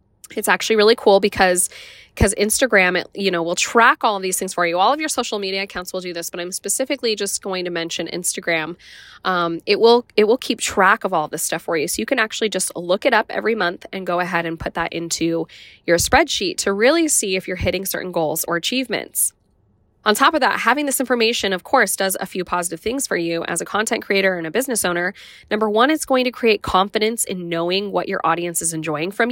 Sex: female